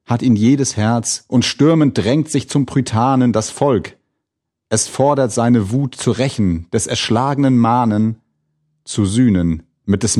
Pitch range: 100-130 Hz